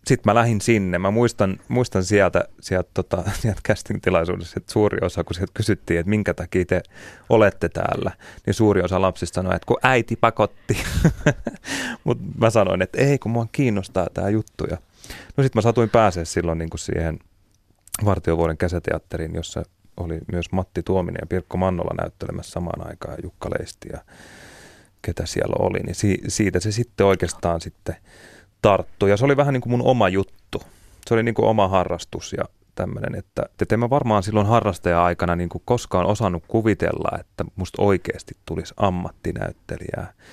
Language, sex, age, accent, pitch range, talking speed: Finnish, male, 30-49, native, 90-110 Hz, 160 wpm